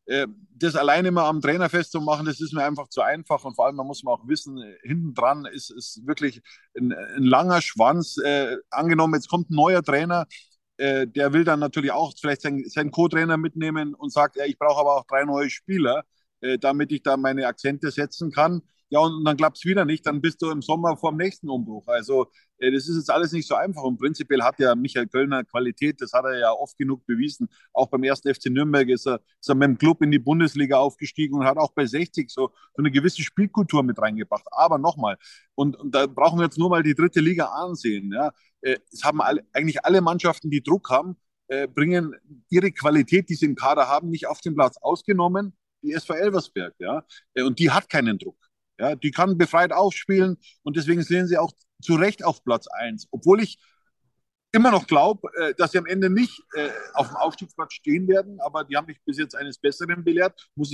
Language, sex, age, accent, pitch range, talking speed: German, male, 30-49, German, 140-175 Hz, 215 wpm